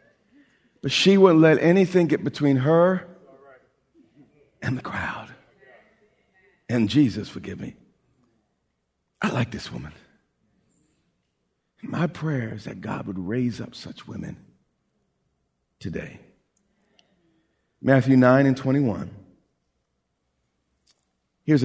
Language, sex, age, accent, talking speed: English, male, 40-59, American, 95 wpm